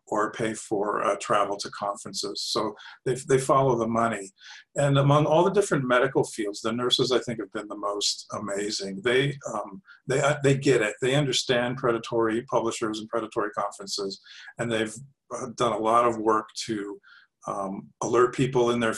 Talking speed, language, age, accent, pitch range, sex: 175 wpm, English, 40-59, American, 105-130 Hz, male